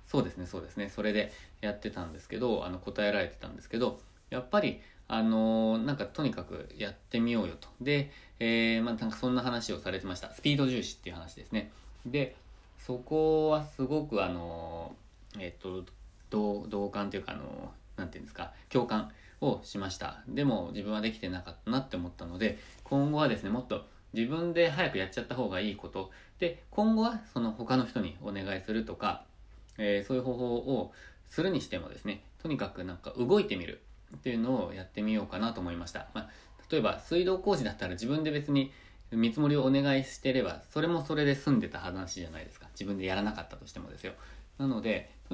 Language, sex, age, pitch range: Japanese, male, 20-39, 95-130 Hz